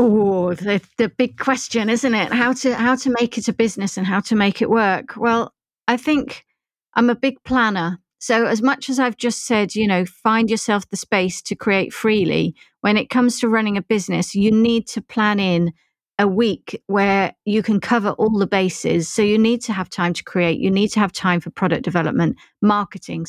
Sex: female